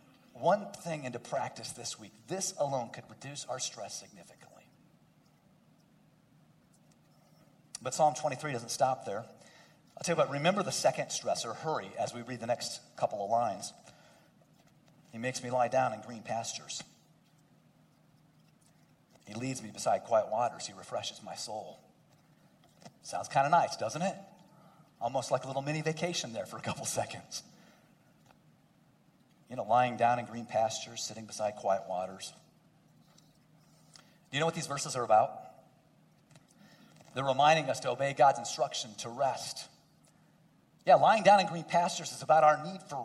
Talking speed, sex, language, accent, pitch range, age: 150 wpm, male, English, American, 125-200 Hz, 40-59